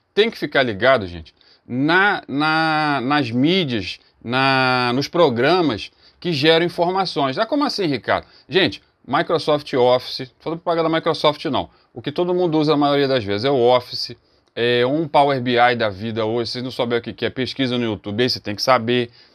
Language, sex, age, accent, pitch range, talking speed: Portuguese, male, 30-49, Brazilian, 120-175 Hz, 185 wpm